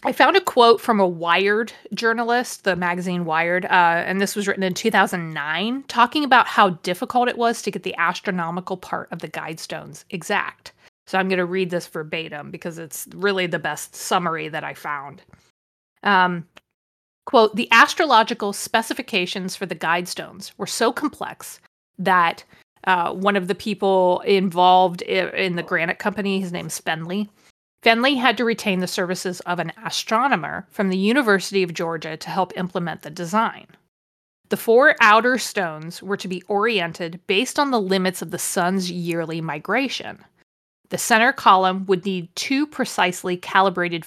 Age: 30-49